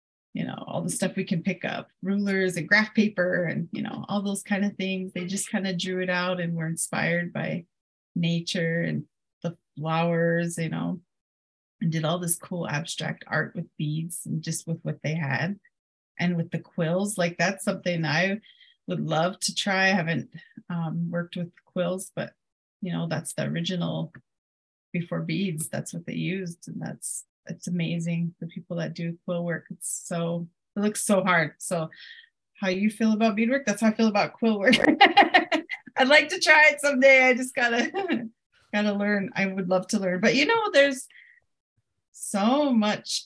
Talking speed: 185 wpm